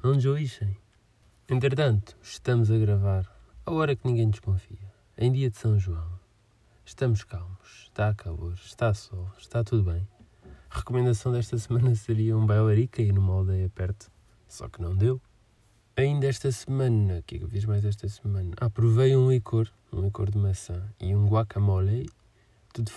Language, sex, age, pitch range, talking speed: Portuguese, male, 20-39, 100-115 Hz, 170 wpm